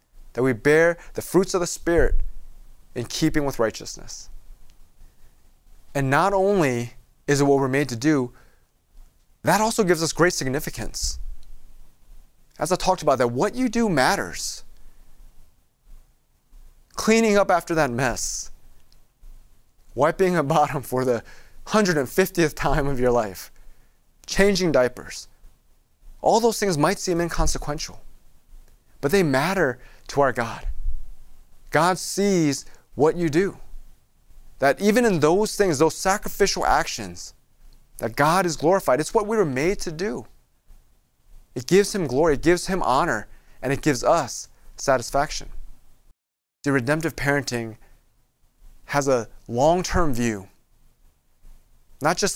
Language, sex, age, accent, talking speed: English, male, 30-49, American, 130 wpm